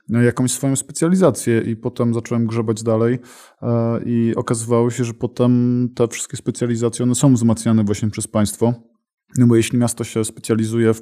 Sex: male